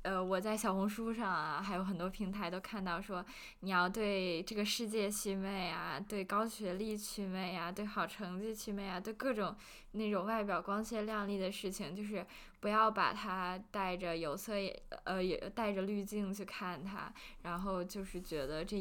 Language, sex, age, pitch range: Chinese, female, 10-29, 195-240 Hz